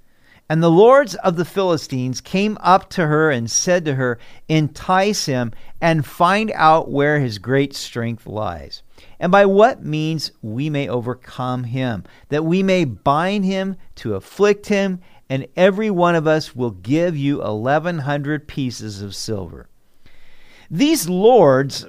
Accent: American